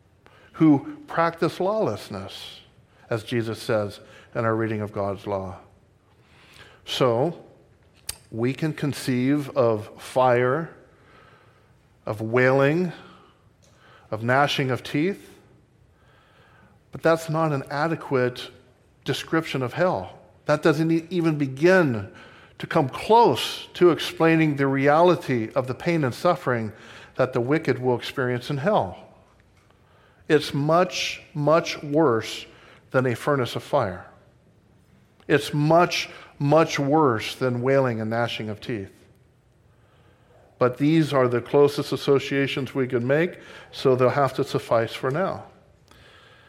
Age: 50-69